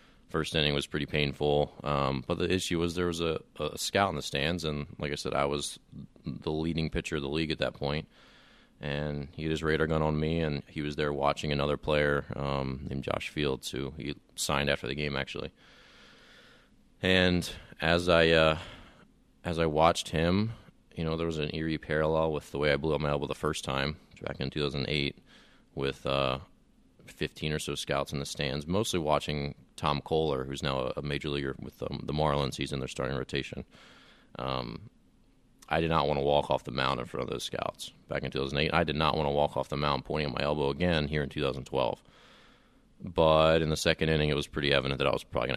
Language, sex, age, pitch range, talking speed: English, male, 30-49, 70-80 Hz, 215 wpm